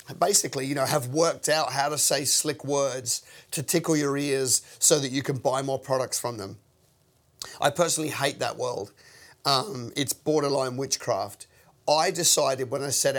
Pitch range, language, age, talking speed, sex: 125-145 Hz, English, 30-49, 175 wpm, male